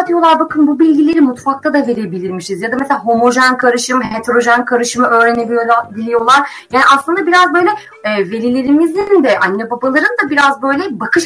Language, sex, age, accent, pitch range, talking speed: Turkish, female, 30-49, native, 220-305 Hz, 145 wpm